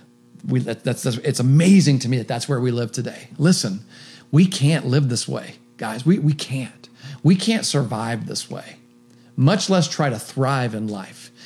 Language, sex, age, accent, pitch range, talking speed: English, male, 40-59, American, 120-145 Hz, 185 wpm